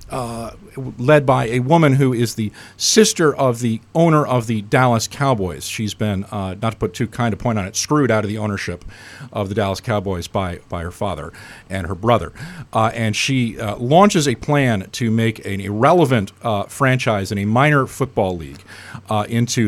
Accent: American